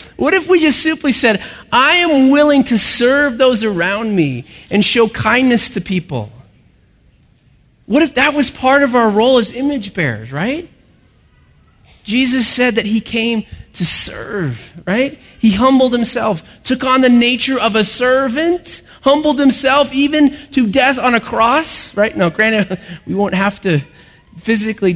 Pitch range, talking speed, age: 200-260 Hz, 155 wpm, 30-49